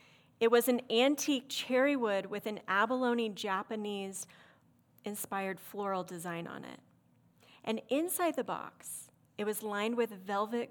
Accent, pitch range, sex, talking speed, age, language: American, 210-275 Hz, female, 125 wpm, 30-49, English